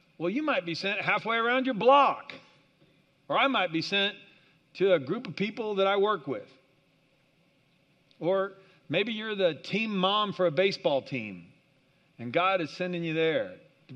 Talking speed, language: 170 wpm, English